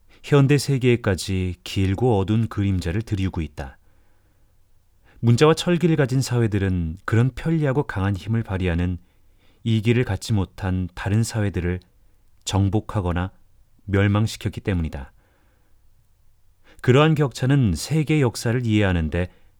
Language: Korean